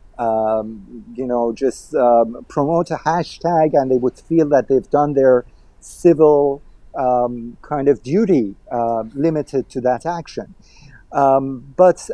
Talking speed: 140 wpm